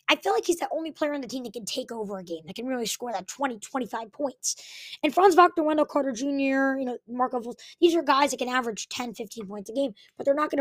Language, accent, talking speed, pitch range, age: English, American, 275 wpm, 220-275 Hz, 20-39